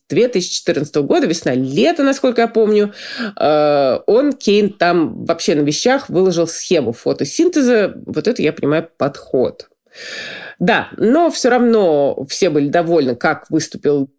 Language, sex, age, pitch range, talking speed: Russian, female, 20-39, 155-210 Hz, 125 wpm